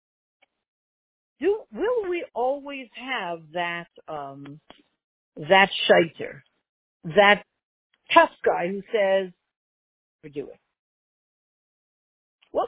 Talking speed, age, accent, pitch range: 85 wpm, 50-69, American, 185-275 Hz